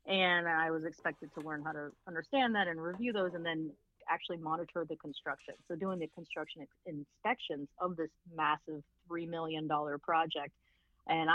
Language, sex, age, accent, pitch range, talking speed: English, female, 30-49, American, 155-185 Hz, 175 wpm